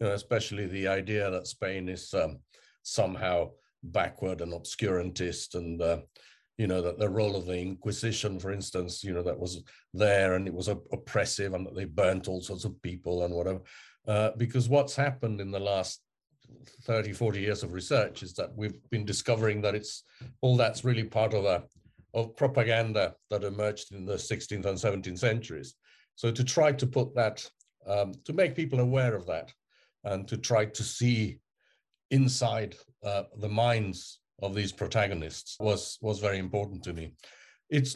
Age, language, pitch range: 50-69, English, 100-125 Hz